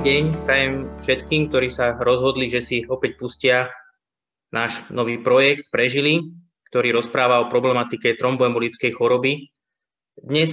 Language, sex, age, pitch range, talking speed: Slovak, male, 20-39, 125-140 Hz, 120 wpm